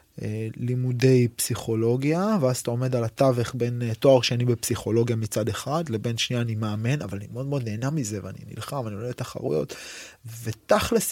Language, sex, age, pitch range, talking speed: Hebrew, male, 20-39, 115-150 Hz, 160 wpm